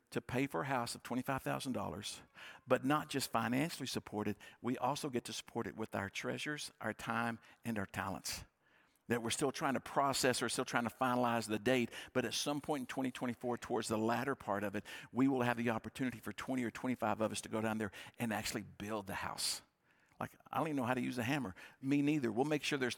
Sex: male